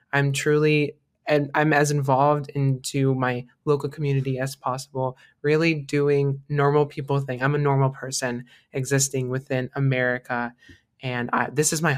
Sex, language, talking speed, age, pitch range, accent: male, English, 140 wpm, 20-39, 125-140 Hz, American